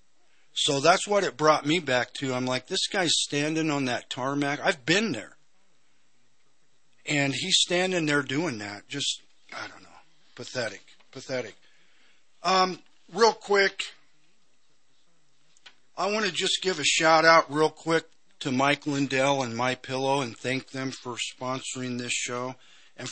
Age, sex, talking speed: 50-69, male, 150 wpm